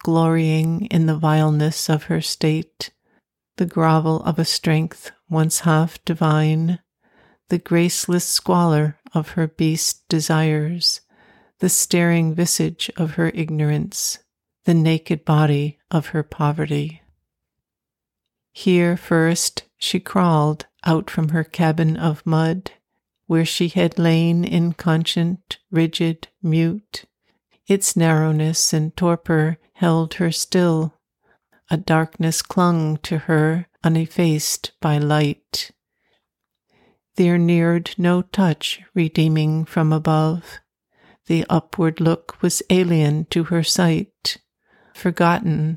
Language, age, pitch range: English, 60-79, 155-175 Hz